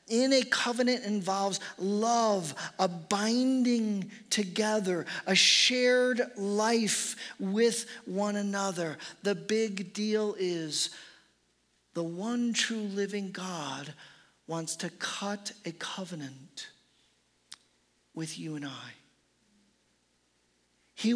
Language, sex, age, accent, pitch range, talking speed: English, male, 40-59, American, 180-230 Hz, 95 wpm